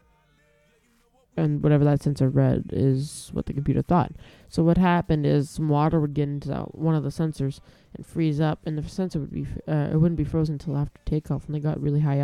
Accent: American